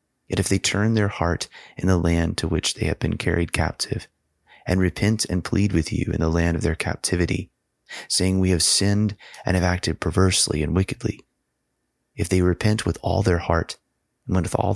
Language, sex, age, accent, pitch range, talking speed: English, male, 30-49, American, 80-95 Hz, 195 wpm